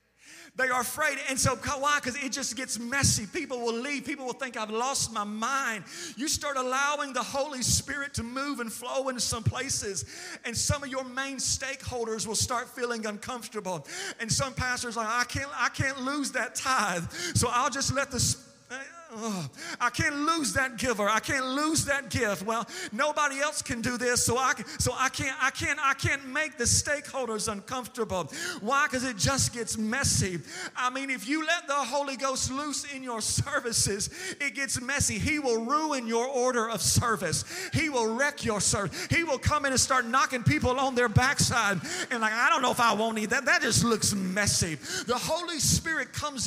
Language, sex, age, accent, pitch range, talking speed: English, male, 40-59, American, 230-285 Hz, 200 wpm